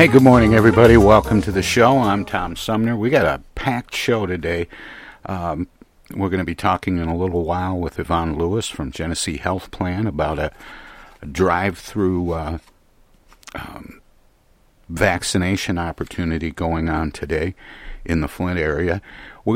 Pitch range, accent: 85-105 Hz, American